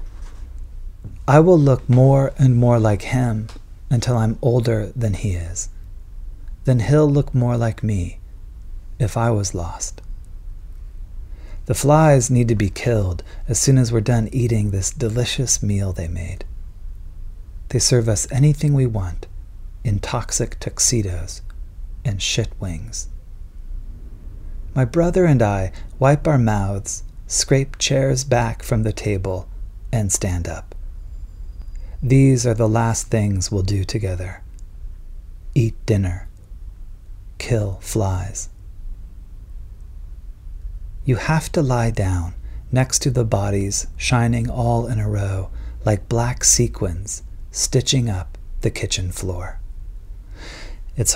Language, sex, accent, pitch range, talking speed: English, male, American, 90-120 Hz, 120 wpm